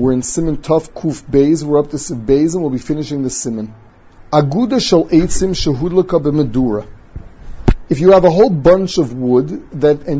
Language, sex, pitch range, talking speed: English, male, 130-170 Hz, 160 wpm